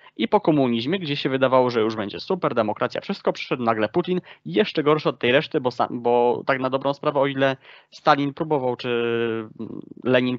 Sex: male